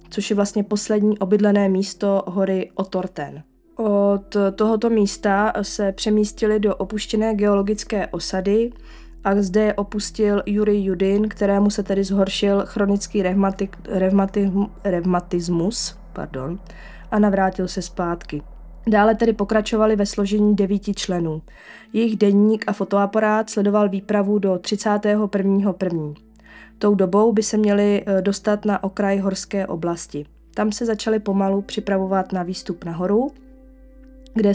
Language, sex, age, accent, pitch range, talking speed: Czech, female, 20-39, native, 190-210 Hz, 115 wpm